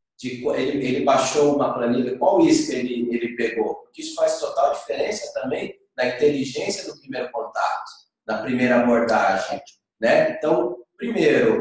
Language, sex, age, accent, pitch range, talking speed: Portuguese, male, 40-59, Brazilian, 115-150 Hz, 150 wpm